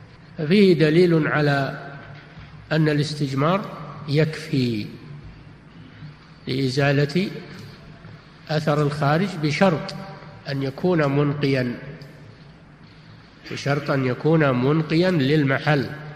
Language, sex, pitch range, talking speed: Arabic, male, 140-165 Hz, 65 wpm